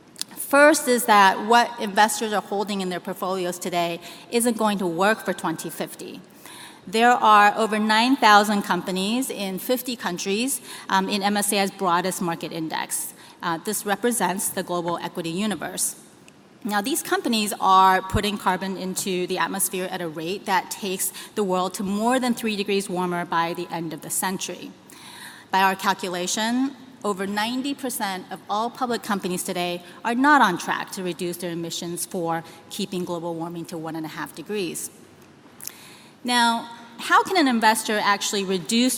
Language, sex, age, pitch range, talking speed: English, female, 30-49, 180-235 Hz, 155 wpm